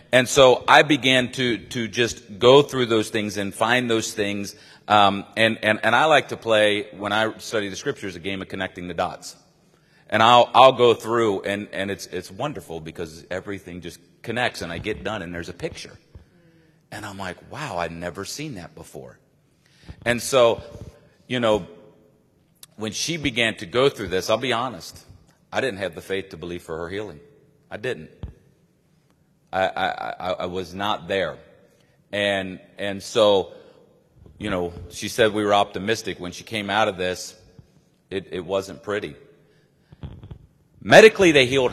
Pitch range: 95-120 Hz